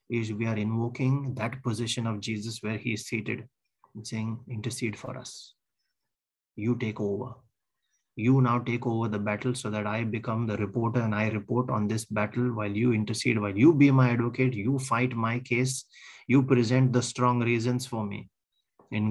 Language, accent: English, Indian